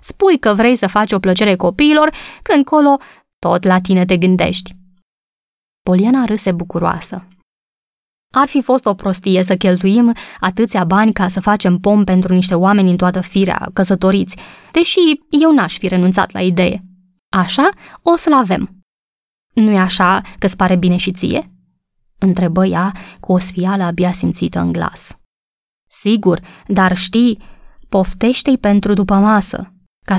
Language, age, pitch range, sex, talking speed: Romanian, 20-39, 185-235 Hz, female, 145 wpm